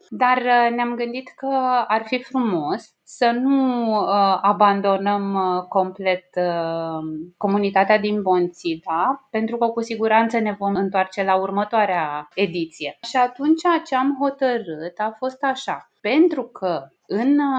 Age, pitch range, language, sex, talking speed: 20-39, 185-235 Hz, Romanian, female, 120 wpm